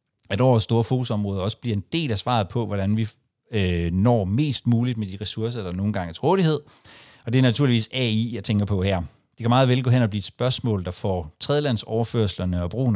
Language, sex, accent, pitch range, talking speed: Danish, male, native, 100-130 Hz, 225 wpm